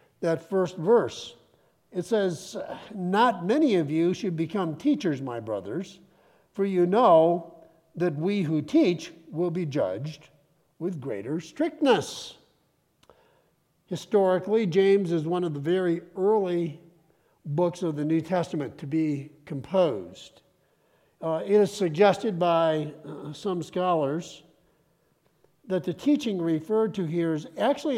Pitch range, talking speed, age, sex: 165-210 Hz, 125 wpm, 60-79, male